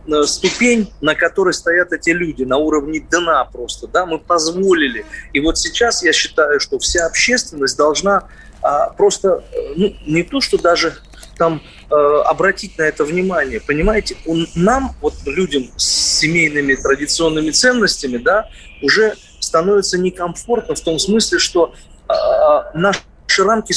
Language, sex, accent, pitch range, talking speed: Russian, male, native, 165-220 Hz, 130 wpm